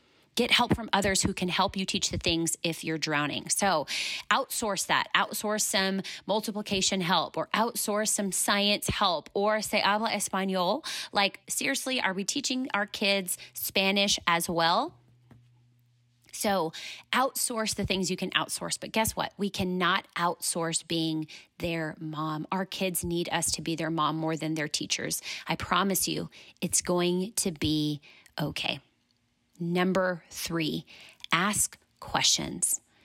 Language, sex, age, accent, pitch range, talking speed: English, female, 30-49, American, 165-200 Hz, 145 wpm